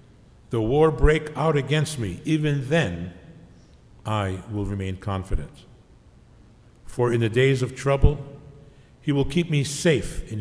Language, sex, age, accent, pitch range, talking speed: English, male, 60-79, American, 100-135 Hz, 140 wpm